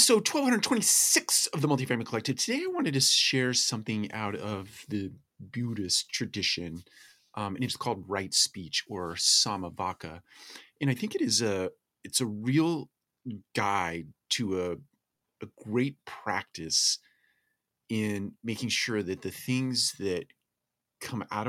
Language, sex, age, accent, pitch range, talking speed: English, male, 30-49, American, 90-120 Hz, 140 wpm